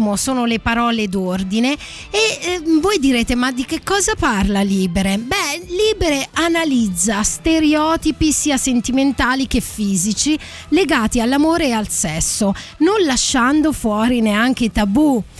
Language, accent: Italian, native